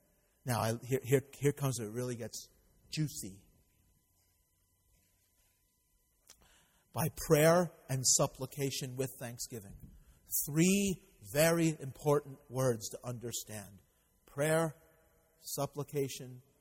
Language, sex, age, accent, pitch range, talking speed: English, male, 40-59, American, 120-150 Hz, 90 wpm